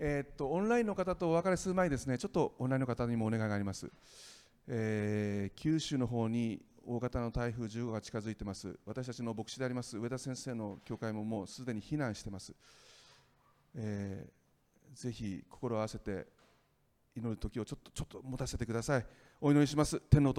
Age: 40-59